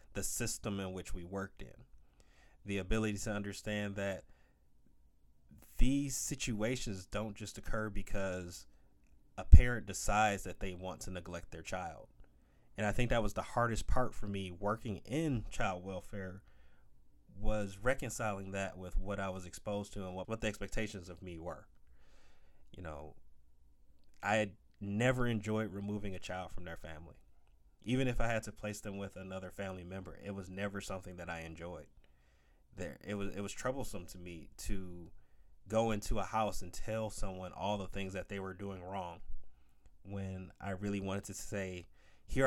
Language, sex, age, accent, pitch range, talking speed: English, male, 30-49, American, 70-105 Hz, 170 wpm